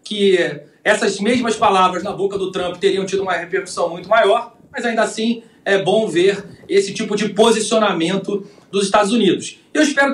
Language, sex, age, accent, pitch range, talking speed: Portuguese, male, 40-59, Brazilian, 190-230 Hz, 170 wpm